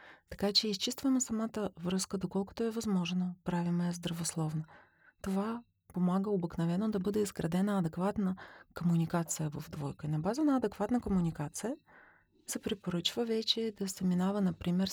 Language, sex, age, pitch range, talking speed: Bulgarian, female, 30-49, 170-205 Hz, 135 wpm